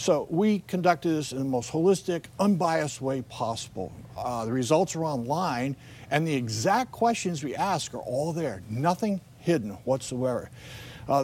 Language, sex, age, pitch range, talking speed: English, male, 60-79, 120-155 Hz, 155 wpm